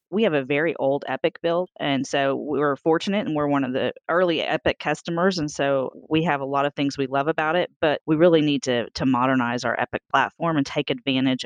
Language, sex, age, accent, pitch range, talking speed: English, female, 30-49, American, 130-155 Hz, 235 wpm